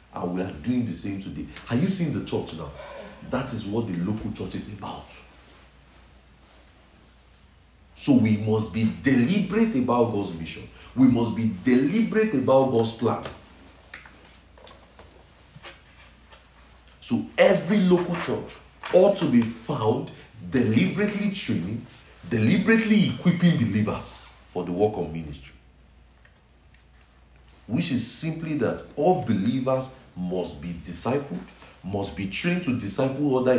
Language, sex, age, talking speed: English, male, 50-69, 125 wpm